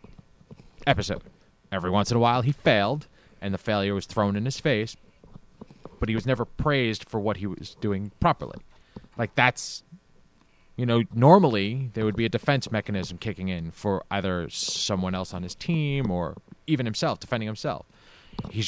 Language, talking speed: English, 170 wpm